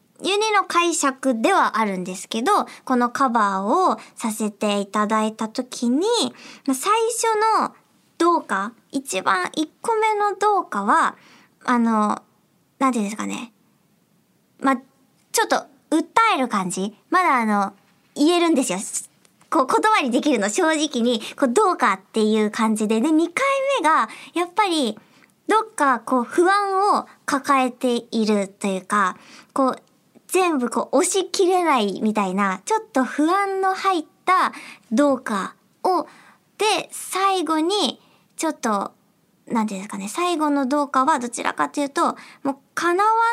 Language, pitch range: Japanese, 215-345 Hz